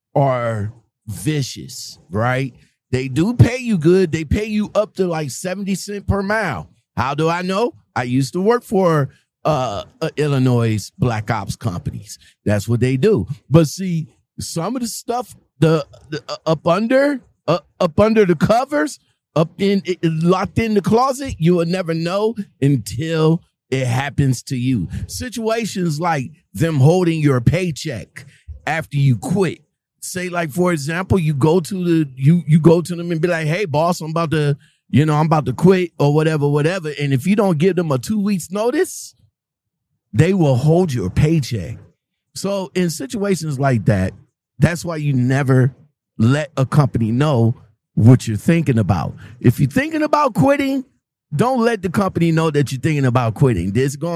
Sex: male